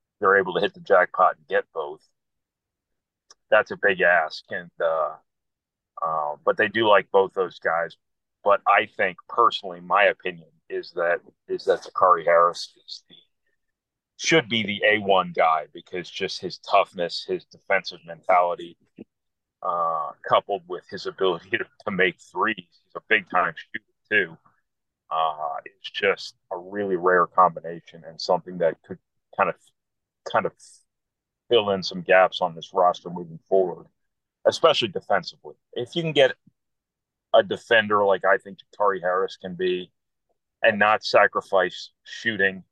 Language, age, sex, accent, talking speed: English, 30-49, male, American, 150 wpm